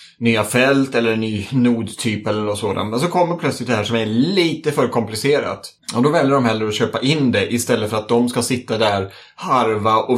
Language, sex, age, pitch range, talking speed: Swedish, male, 30-49, 110-130 Hz, 225 wpm